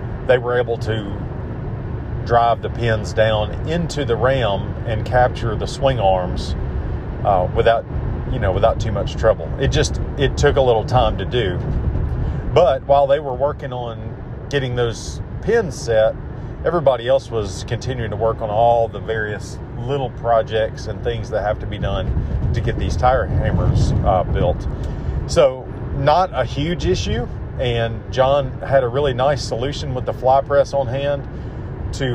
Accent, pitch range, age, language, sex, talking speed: American, 110-130 Hz, 40-59, English, male, 165 wpm